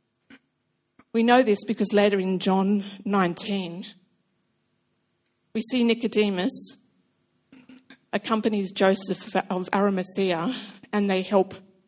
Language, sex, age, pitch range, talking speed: English, female, 50-69, 190-225 Hz, 90 wpm